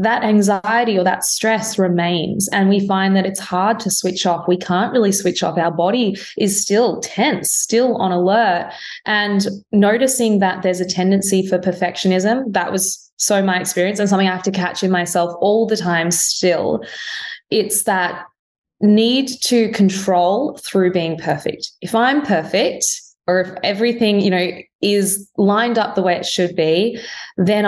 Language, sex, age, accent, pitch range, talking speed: English, female, 20-39, Australian, 175-220 Hz, 170 wpm